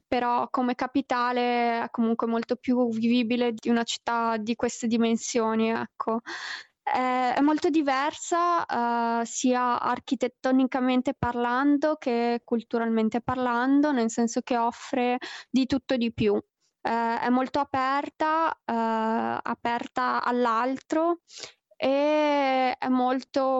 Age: 20-39